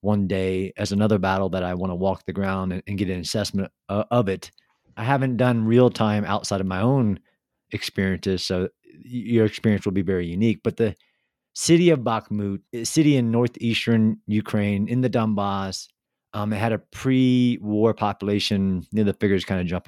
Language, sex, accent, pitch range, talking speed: English, male, American, 95-120 Hz, 190 wpm